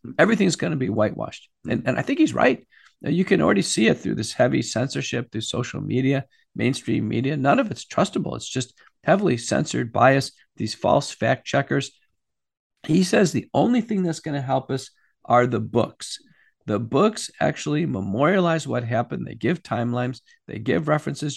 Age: 50-69